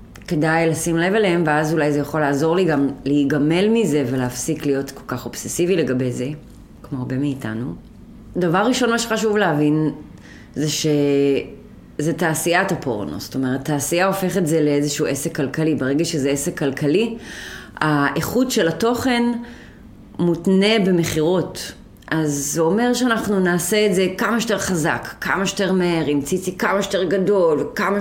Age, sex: 30-49, female